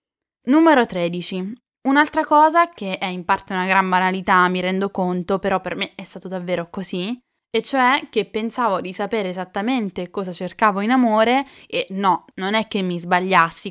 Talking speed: 170 wpm